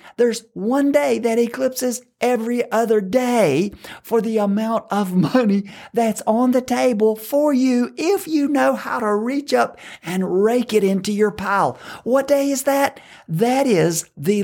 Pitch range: 170-225 Hz